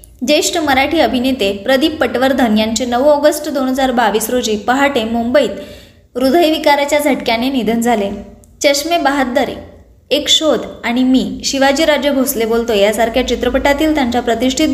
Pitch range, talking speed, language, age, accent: 235-295 Hz, 125 wpm, Marathi, 20-39, native